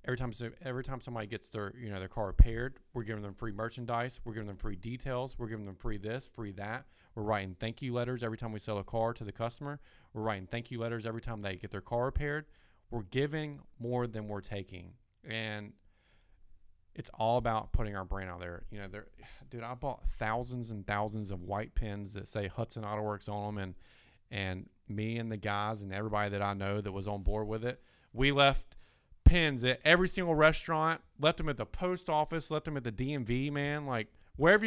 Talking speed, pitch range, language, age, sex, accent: 220 wpm, 100-125 Hz, English, 40-59, male, American